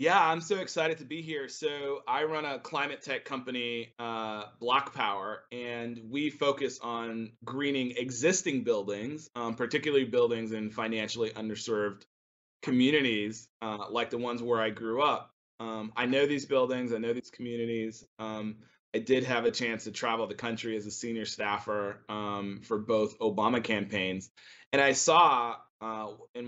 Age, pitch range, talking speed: 20-39, 110-135 Hz, 165 wpm